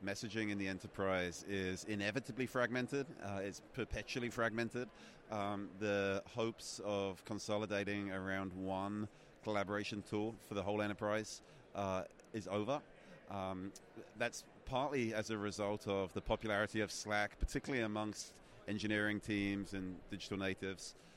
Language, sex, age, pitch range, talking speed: English, male, 30-49, 95-110 Hz, 130 wpm